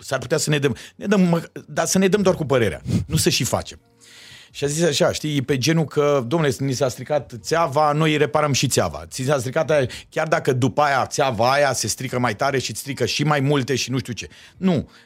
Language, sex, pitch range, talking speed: Romanian, male, 115-155 Hz, 235 wpm